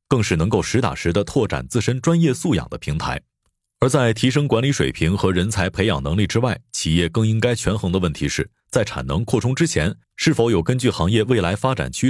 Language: Chinese